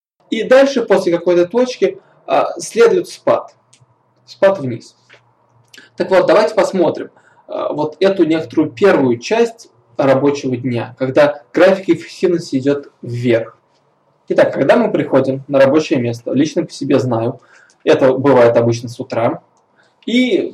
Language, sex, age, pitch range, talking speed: Russian, male, 20-39, 125-185 Hz, 125 wpm